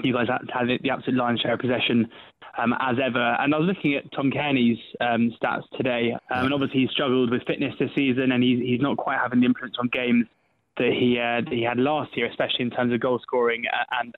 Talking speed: 235 wpm